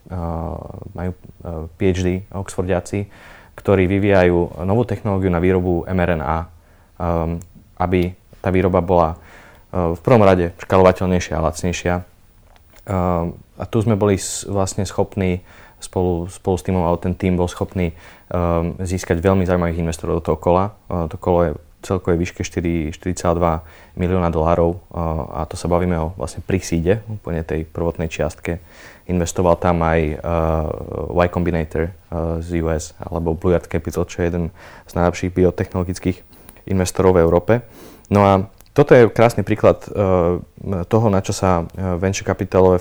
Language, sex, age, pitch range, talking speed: Czech, male, 20-39, 85-95 Hz, 140 wpm